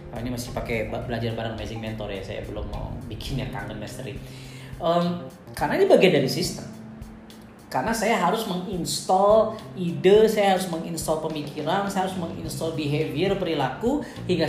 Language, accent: Indonesian, native